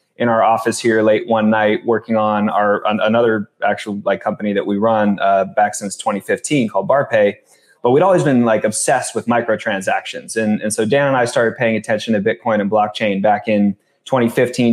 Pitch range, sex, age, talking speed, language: 105-125 Hz, male, 20-39, 195 wpm, English